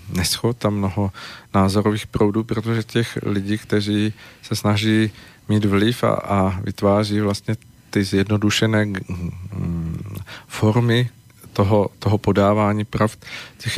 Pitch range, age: 100-115 Hz, 40-59